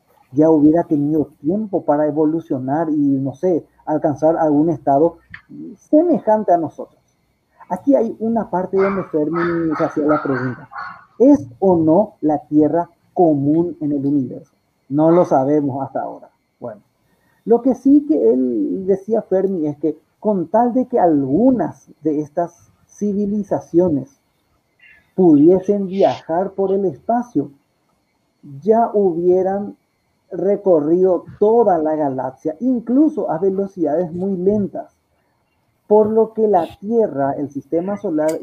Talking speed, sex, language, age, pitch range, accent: 125 wpm, male, Spanish, 50-69, 150-205 Hz, Mexican